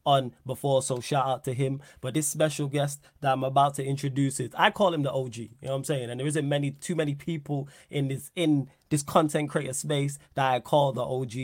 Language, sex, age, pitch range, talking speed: English, male, 20-39, 135-155 Hz, 240 wpm